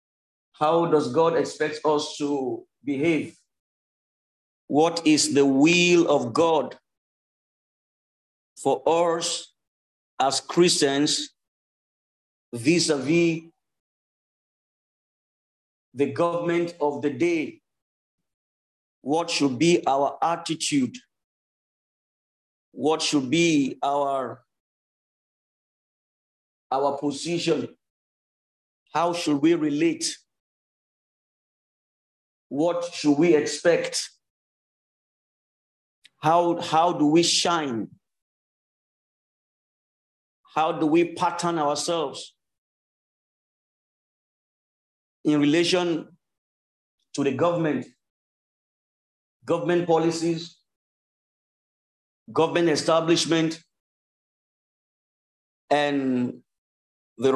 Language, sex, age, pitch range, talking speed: English, male, 50-69, 140-170 Hz, 65 wpm